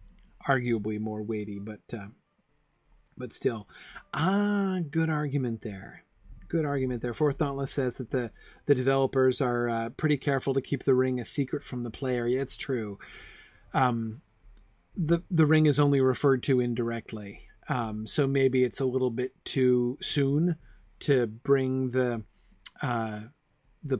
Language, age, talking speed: English, 30-49, 150 wpm